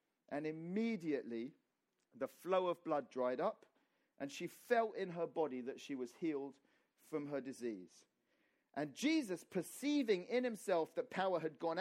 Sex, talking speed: male, 150 wpm